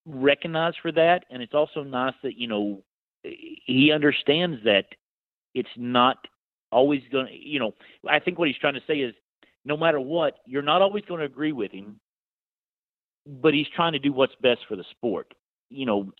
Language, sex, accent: English, male, American